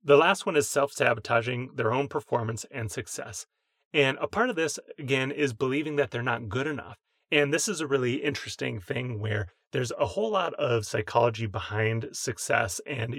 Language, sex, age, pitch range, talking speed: English, male, 30-49, 110-145 Hz, 185 wpm